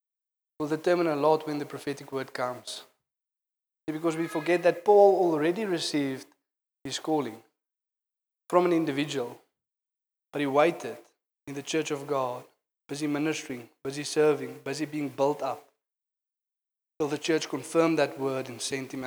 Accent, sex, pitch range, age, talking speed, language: South African, male, 140-160 Hz, 20-39, 145 wpm, English